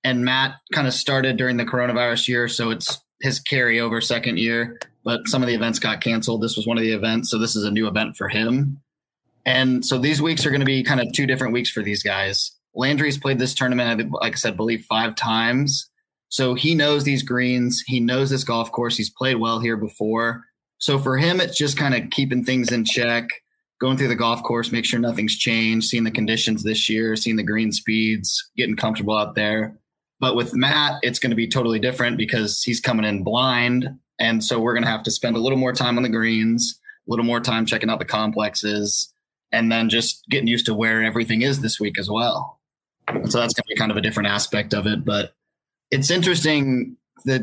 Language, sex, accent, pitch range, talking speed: English, male, American, 110-130 Hz, 225 wpm